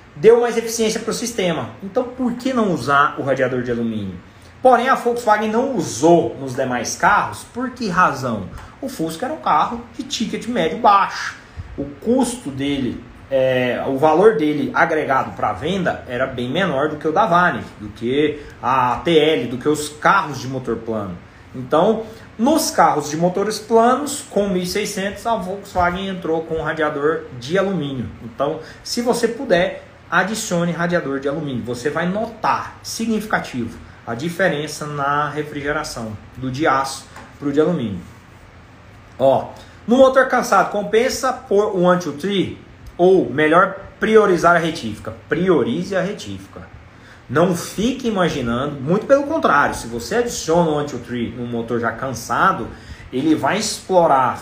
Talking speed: 150 wpm